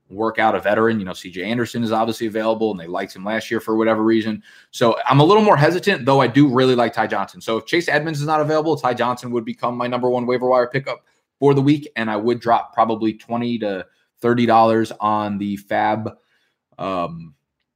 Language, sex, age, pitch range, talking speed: English, male, 20-39, 105-125 Hz, 220 wpm